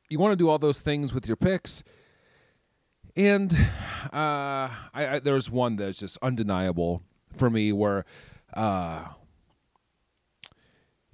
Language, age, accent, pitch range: English, 40-59, American, 95-130 Hz